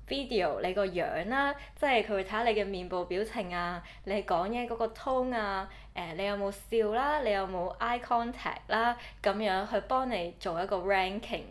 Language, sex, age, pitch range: Chinese, female, 20-39, 175-225 Hz